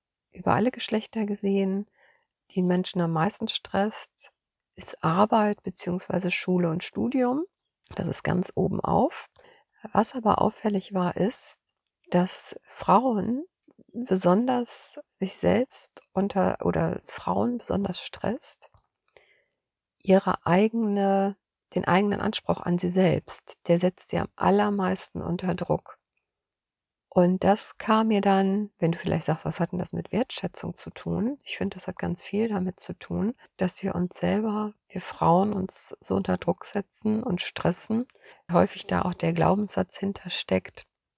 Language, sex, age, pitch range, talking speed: German, female, 50-69, 180-210 Hz, 140 wpm